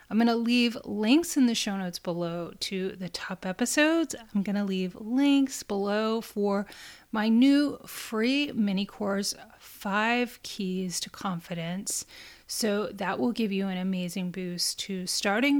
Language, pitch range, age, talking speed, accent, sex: English, 185-225 Hz, 30-49, 155 wpm, American, female